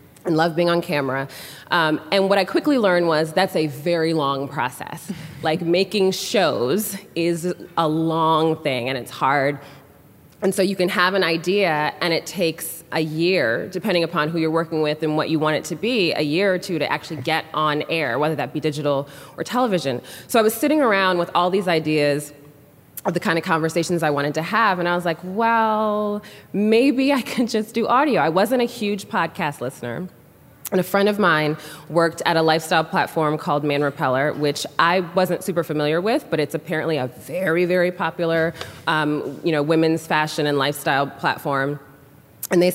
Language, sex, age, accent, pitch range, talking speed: English, female, 20-39, American, 150-190 Hz, 195 wpm